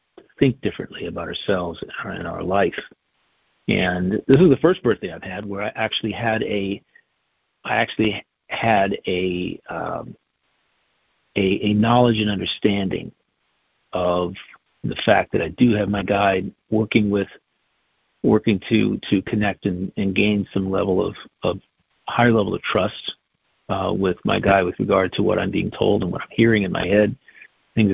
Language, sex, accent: English, male, American